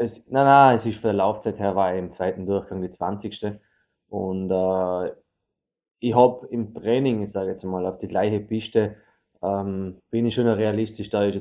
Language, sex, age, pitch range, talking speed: German, male, 20-39, 100-115 Hz, 195 wpm